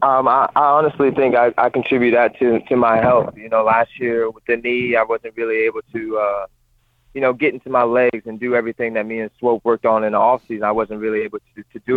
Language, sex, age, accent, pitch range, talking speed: English, male, 20-39, American, 110-120 Hz, 260 wpm